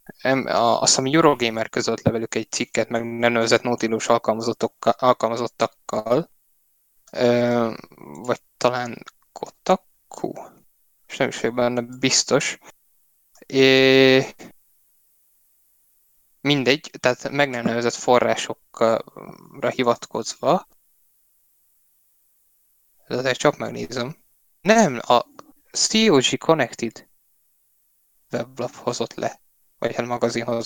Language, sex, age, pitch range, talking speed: Hungarian, male, 20-39, 120-150 Hz, 80 wpm